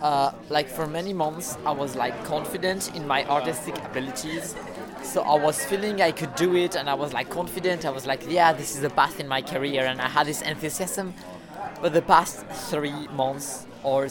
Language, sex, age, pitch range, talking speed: Finnish, male, 20-39, 130-155 Hz, 205 wpm